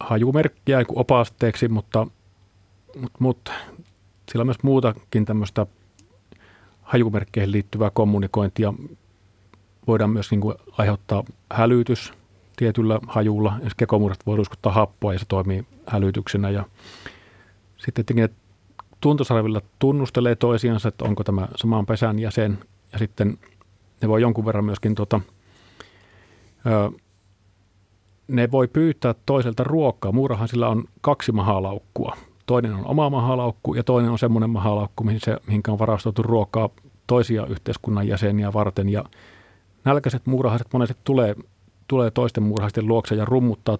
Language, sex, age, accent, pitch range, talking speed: Finnish, male, 40-59, native, 100-120 Hz, 120 wpm